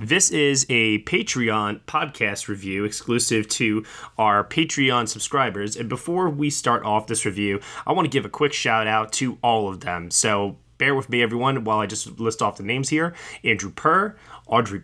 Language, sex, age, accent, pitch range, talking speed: English, male, 20-39, American, 110-135 Hz, 185 wpm